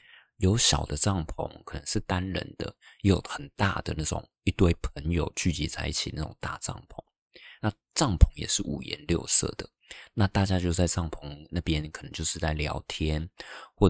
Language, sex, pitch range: Chinese, male, 75-95 Hz